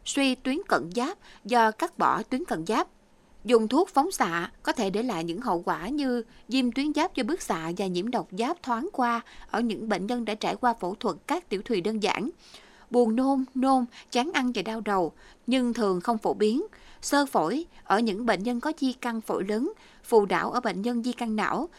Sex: female